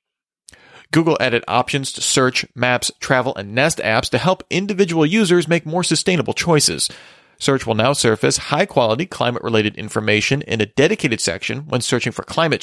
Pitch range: 115-155 Hz